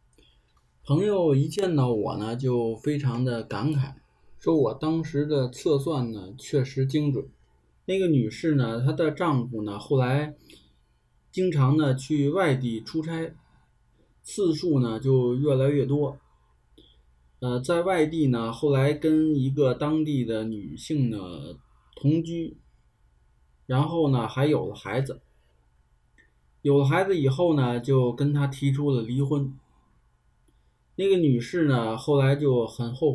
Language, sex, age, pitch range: Chinese, male, 20-39, 110-150 Hz